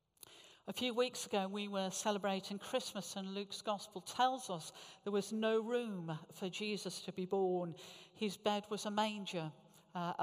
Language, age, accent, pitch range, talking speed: English, 50-69, British, 170-210 Hz, 165 wpm